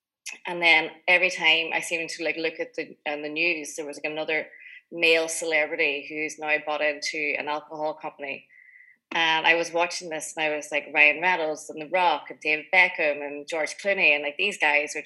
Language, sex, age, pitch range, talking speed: English, female, 20-39, 150-170 Hz, 205 wpm